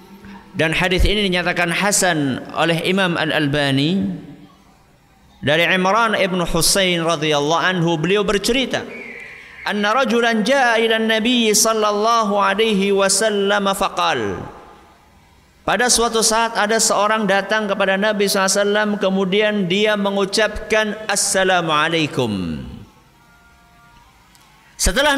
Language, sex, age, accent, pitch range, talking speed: Indonesian, male, 50-69, native, 170-235 Hz, 75 wpm